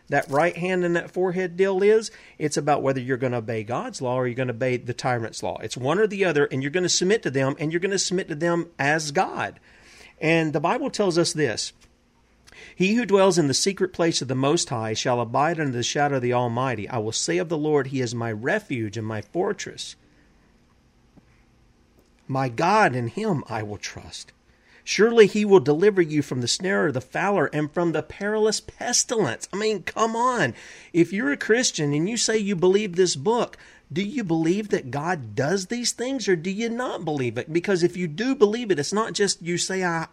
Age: 40-59